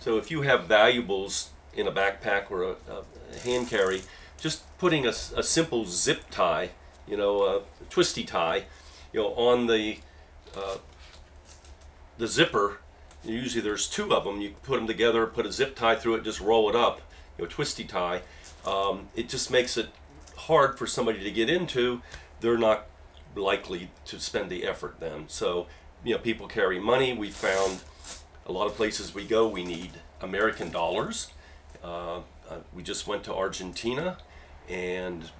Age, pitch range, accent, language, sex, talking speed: 40-59, 80-115 Hz, American, English, male, 170 wpm